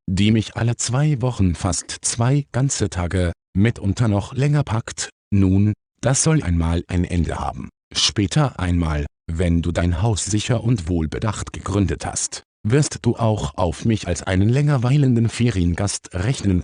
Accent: German